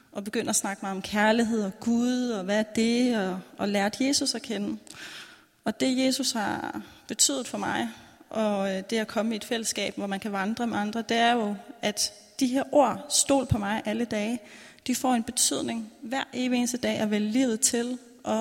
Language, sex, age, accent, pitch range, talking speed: Danish, female, 30-49, native, 220-255 Hz, 210 wpm